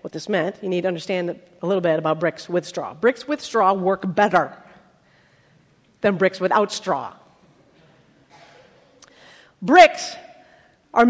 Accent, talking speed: American, 135 wpm